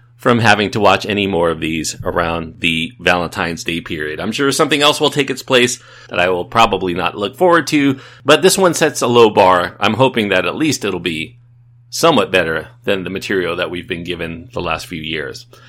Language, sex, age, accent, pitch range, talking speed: English, male, 40-59, American, 100-140 Hz, 215 wpm